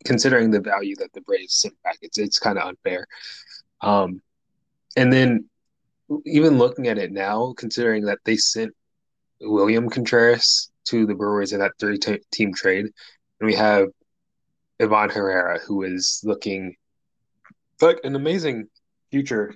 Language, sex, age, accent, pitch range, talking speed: English, male, 20-39, American, 100-140 Hz, 140 wpm